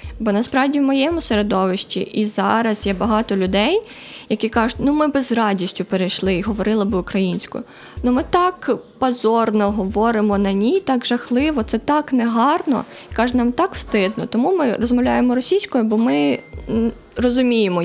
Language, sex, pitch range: Ukrainian, female, 205-255 Hz